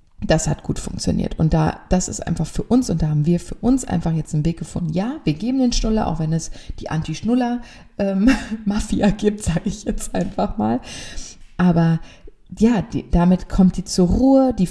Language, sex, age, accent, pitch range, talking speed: German, female, 30-49, German, 155-205 Hz, 195 wpm